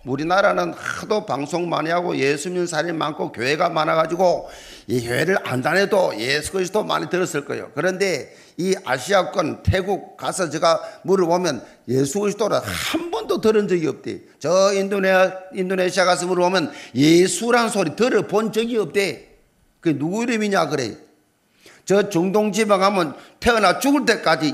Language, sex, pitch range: Korean, male, 170-225 Hz